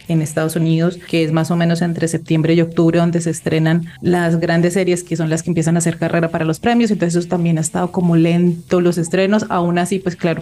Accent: Colombian